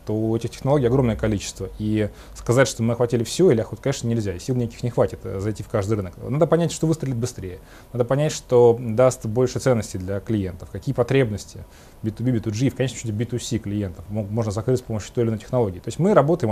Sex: male